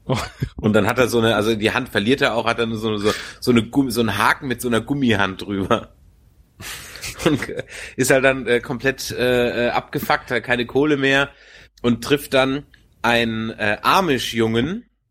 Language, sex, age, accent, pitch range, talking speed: German, male, 30-49, German, 110-130 Hz, 165 wpm